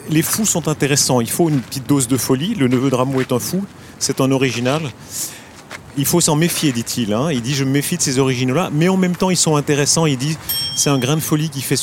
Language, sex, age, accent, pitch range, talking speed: French, male, 40-59, French, 120-150 Hz, 260 wpm